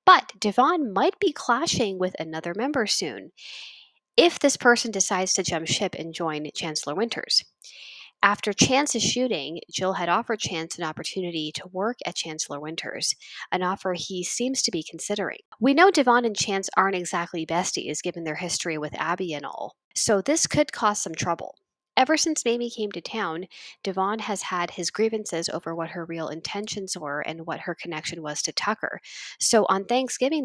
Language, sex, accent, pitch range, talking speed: English, female, American, 165-215 Hz, 175 wpm